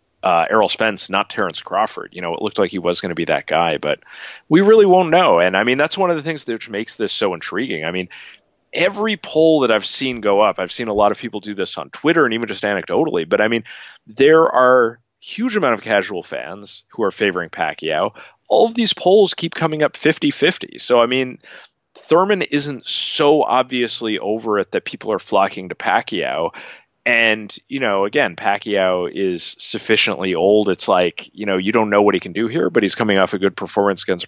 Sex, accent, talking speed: male, American, 220 wpm